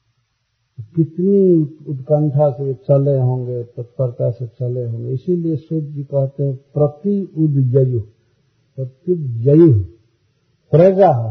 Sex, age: male, 50-69